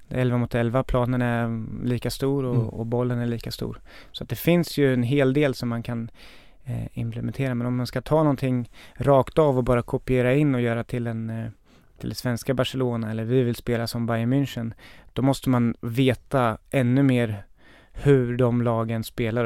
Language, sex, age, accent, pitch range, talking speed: English, male, 30-49, Swedish, 115-135 Hz, 195 wpm